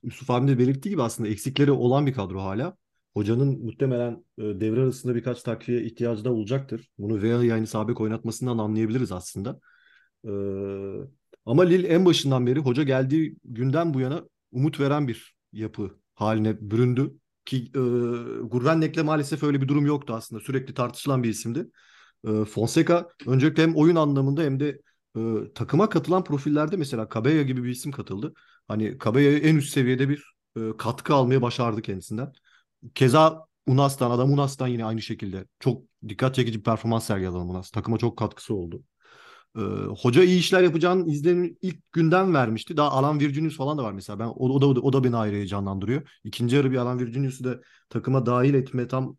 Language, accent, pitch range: Turkish, native, 115-145 Hz